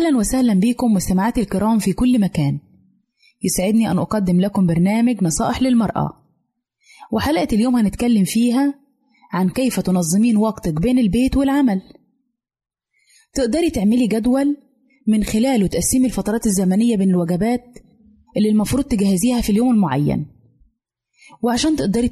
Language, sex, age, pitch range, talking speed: Arabic, female, 20-39, 190-245 Hz, 120 wpm